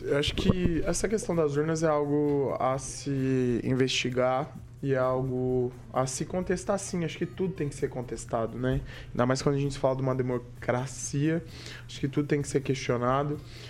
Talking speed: 185 wpm